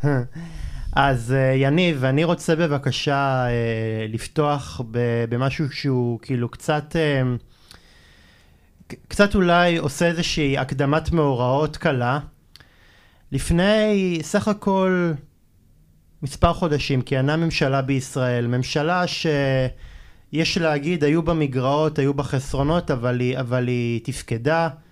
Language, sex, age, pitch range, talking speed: Hebrew, male, 20-39, 125-155 Hz, 95 wpm